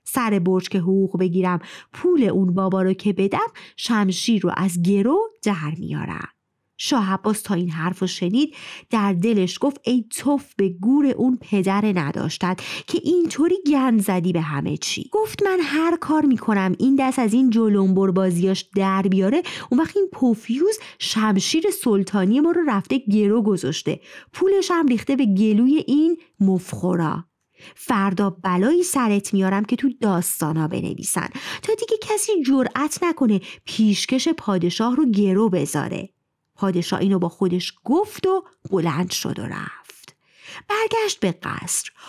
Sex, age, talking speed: female, 30-49, 145 wpm